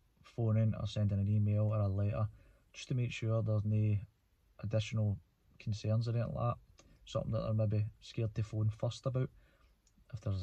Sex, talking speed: male, 180 wpm